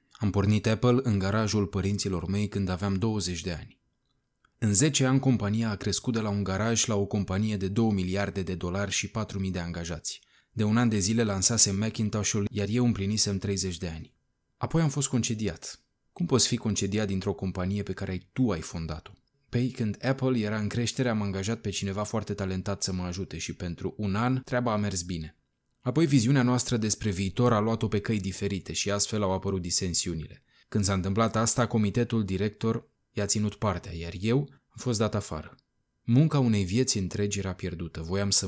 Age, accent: 20-39, native